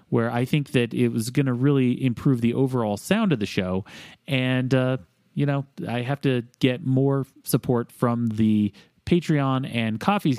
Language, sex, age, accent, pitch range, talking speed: English, male, 30-49, American, 105-145 Hz, 180 wpm